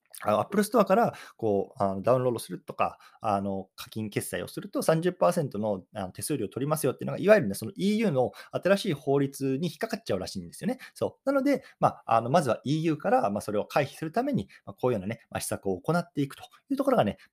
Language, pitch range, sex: Japanese, 105-180 Hz, male